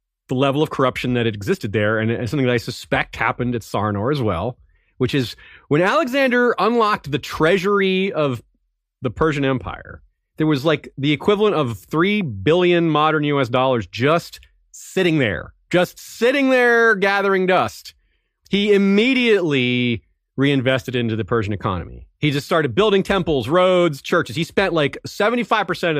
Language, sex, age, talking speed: English, male, 30-49, 150 wpm